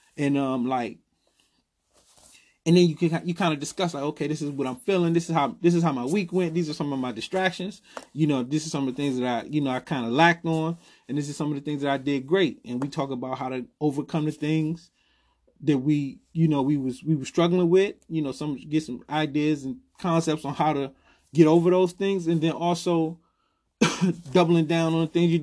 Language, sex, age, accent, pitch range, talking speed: English, male, 30-49, American, 140-180 Hz, 245 wpm